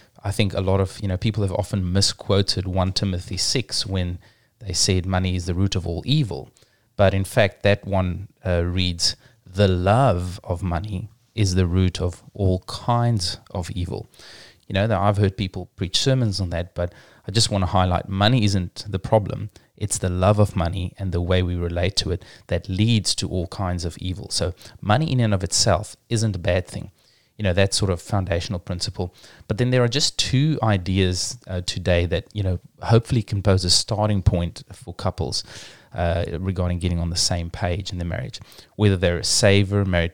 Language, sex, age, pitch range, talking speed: English, male, 30-49, 90-110 Hz, 195 wpm